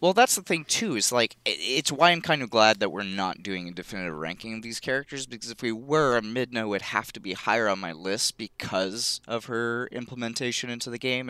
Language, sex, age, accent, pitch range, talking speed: English, male, 20-39, American, 95-120 Hz, 230 wpm